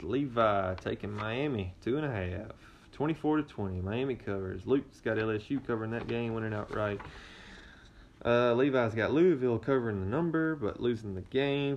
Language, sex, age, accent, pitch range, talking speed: English, male, 20-39, American, 95-125 Hz, 160 wpm